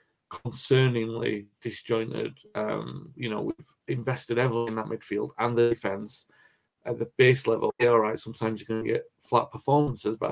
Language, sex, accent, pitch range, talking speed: English, male, British, 110-120 Hz, 165 wpm